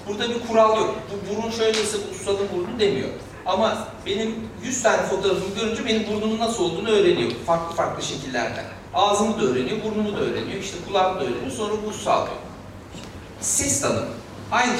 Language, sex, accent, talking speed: Turkish, male, native, 165 wpm